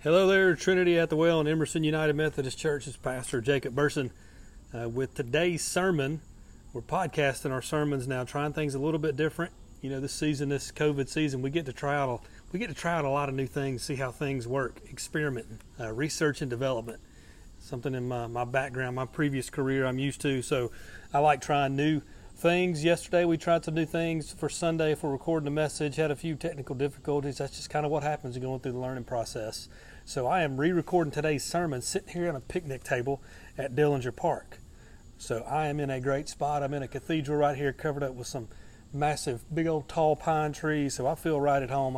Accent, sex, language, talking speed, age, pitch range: American, male, English, 215 wpm, 30-49, 130-155 Hz